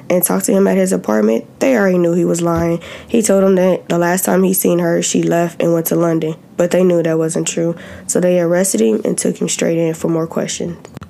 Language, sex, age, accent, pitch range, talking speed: English, female, 20-39, American, 165-190 Hz, 255 wpm